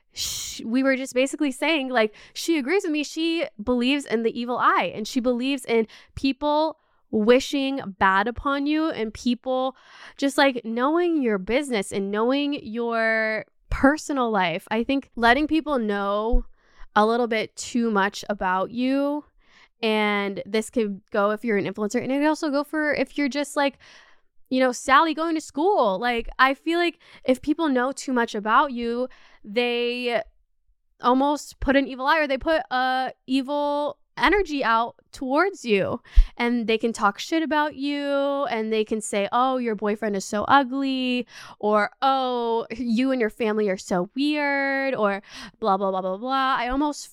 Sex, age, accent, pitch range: female, 10-29, American, 220-285 Hz